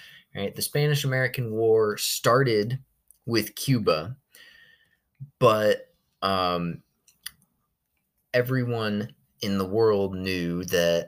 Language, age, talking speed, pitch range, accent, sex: English, 20-39, 80 wpm, 100-140 Hz, American, male